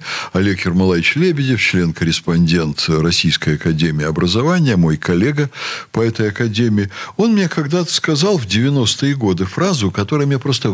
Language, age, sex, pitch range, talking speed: Russian, 60-79, male, 90-135 Hz, 130 wpm